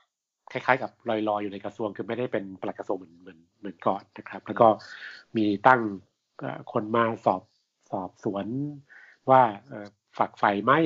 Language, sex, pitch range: Thai, male, 105-130 Hz